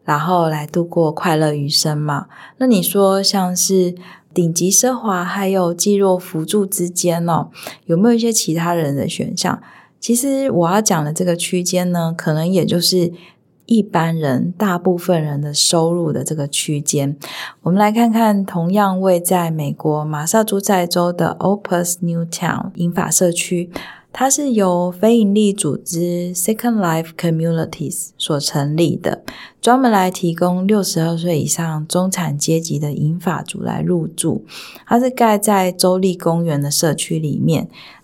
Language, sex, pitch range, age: Chinese, female, 160-195 Hz, 20-39